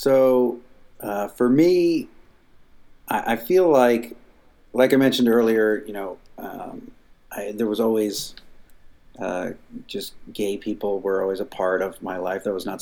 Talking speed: 150 wpm